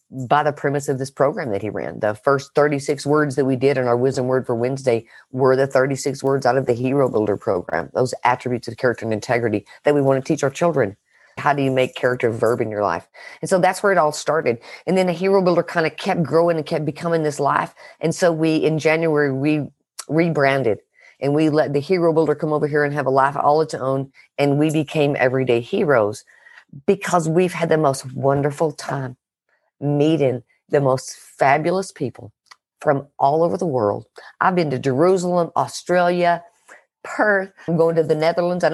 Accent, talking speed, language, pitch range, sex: American, 205 wpm, English, 135-170 Hz, female